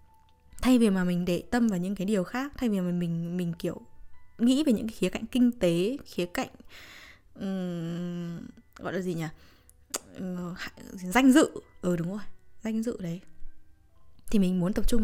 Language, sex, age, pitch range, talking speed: Vietnamese, female, 10-29, 180-250 Hz, 190 wpm